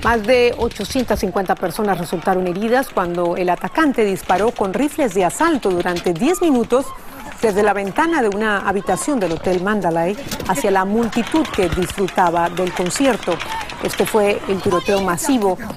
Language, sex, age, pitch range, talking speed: Spanish, female, 50-69, 185-255 Hz, 145 wpm